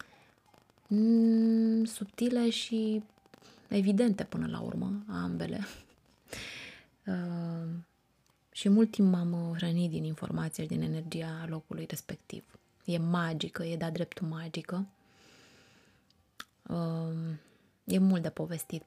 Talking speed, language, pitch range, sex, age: 95 wpm, Romanian, 155-185 Hz, female, 20-39